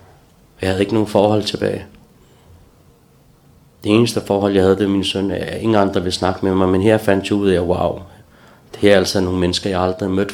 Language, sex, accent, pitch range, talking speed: Danish, male, native, 95-105 Hz, 225 wpm